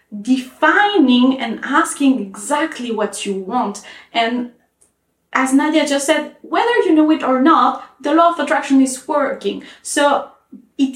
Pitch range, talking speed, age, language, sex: 220-280 Hz, 140 wpm, 20-39, English, female